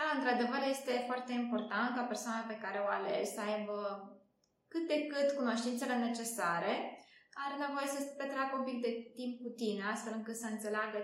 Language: Romanian